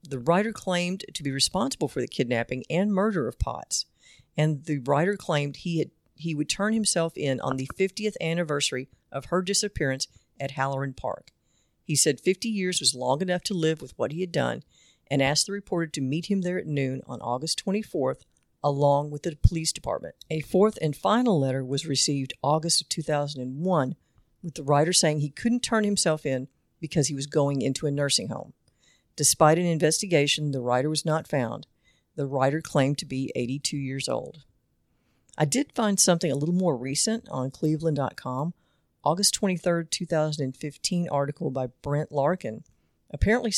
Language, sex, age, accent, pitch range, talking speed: English, female, 50-69, American, 140-175 Hz, 175 wpm